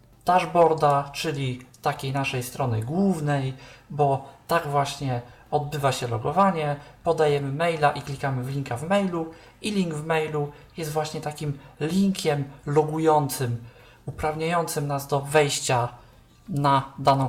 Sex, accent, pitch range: male, native, 130-155 Hz